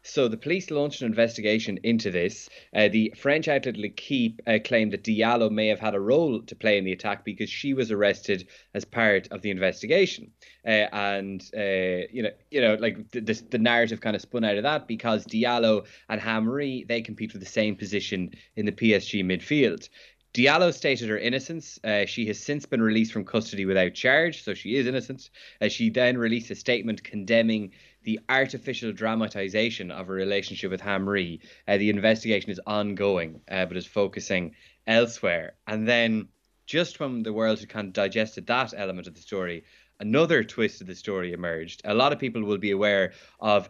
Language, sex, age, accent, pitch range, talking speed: English, male, 20-39, Irish, 100-115 Hz, 190 wpm